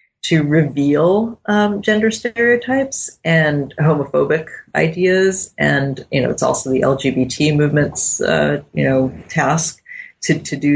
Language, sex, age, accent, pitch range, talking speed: English, female, 30-49, American, 130-165 Hz, 130 wpm